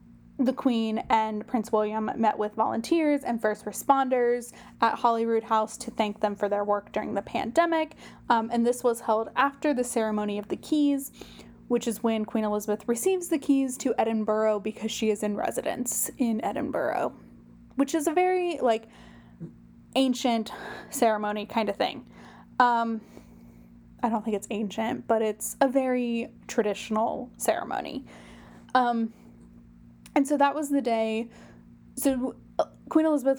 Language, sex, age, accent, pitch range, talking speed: English, female, 10-29, American, 210-245 Hz, 150 wpm